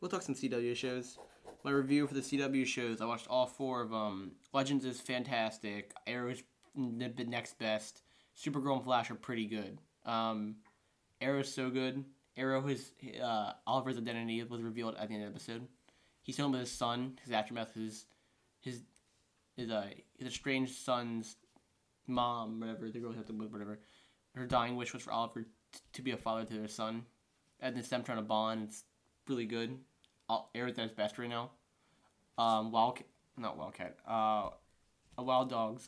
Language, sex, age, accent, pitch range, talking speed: English, male, 20-39, American, 110-125 Hz, 180 wpm